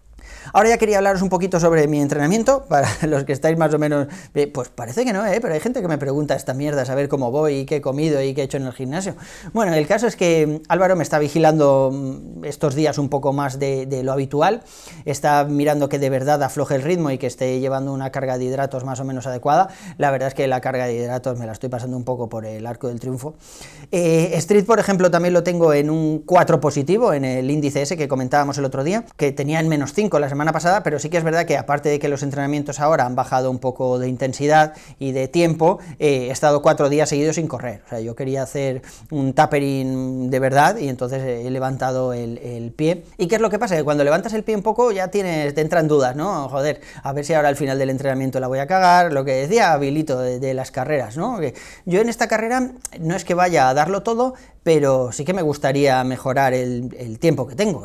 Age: 30-49